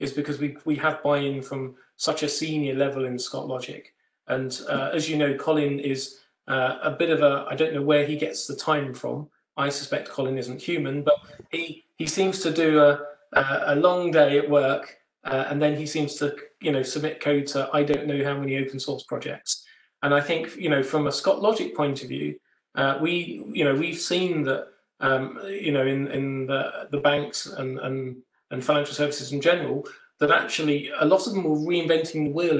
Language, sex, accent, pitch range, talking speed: English, male, British, 140-155 Hz, 210 wpm